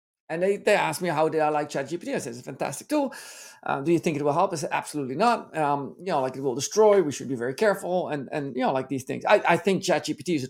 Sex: male